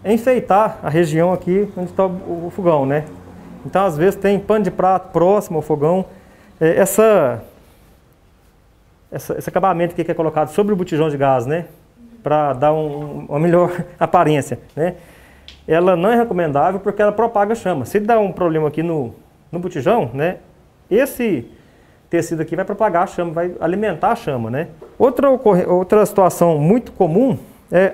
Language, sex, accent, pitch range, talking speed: Portuguese, male, Brazilian, 160-210 Hz, 165 wpm